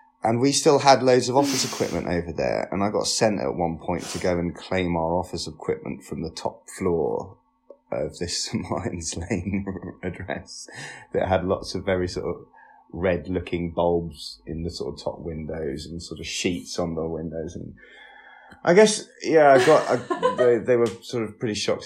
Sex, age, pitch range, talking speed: male, 20-39, 85-125 Hz, 190 wpm